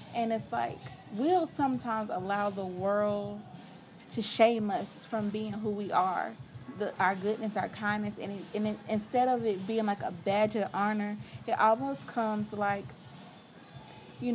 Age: 30-49